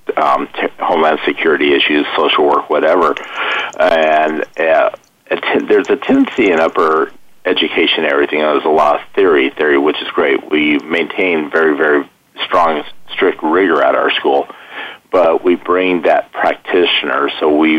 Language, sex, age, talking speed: English, male, 50-69, 145 wpm